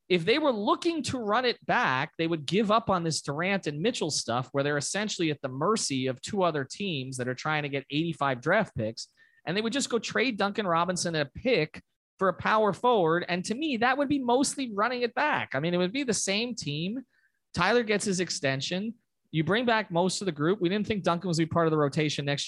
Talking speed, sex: 240 wpm, male